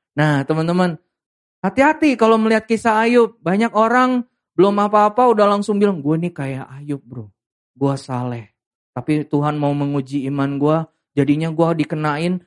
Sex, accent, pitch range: male, native, 135-220 Hz